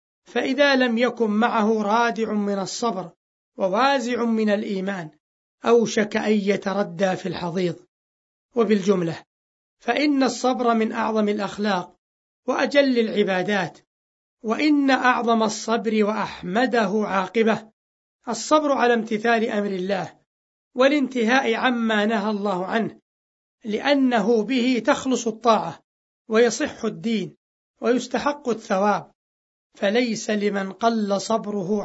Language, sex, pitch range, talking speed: Arabic, male, 200-245 Hz, 95 wpm